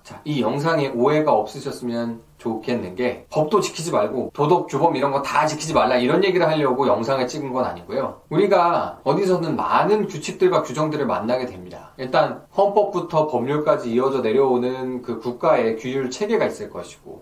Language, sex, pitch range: Korean, male, 130-205 Hz